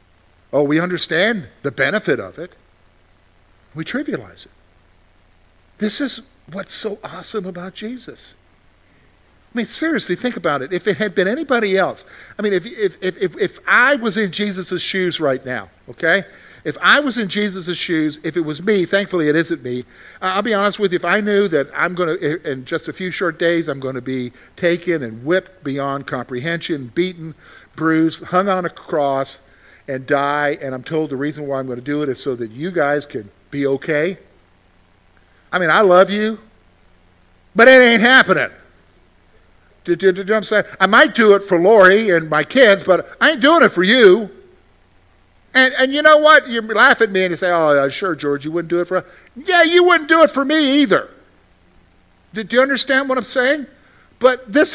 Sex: male